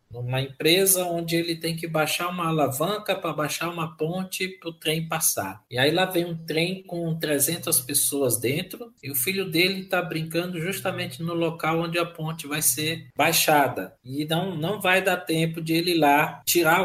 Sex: male